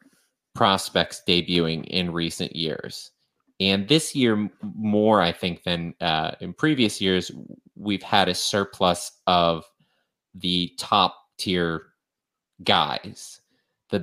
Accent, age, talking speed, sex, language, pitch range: American, 30-49, 110 wpm, male, English, 85-95 Hz